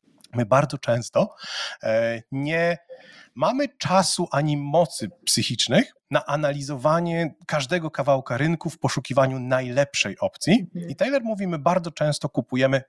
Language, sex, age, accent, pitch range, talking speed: English, male, 30-49, Polish, 130-180 Hz, 115 wpm